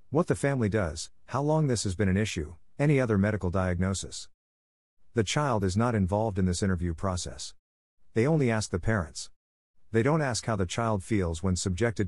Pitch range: 90-115 Hz